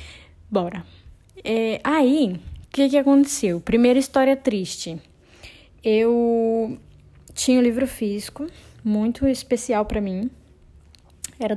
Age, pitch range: 10-29, 210-260 Hz